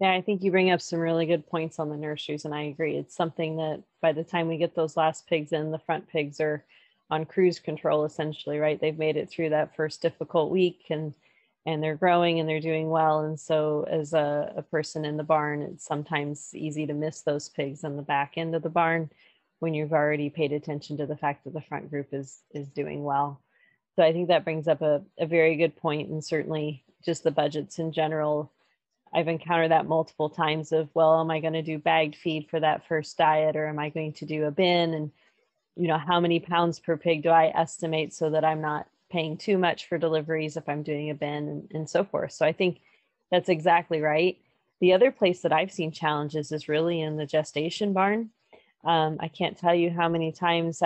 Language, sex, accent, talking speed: English, female, American, 225 wpm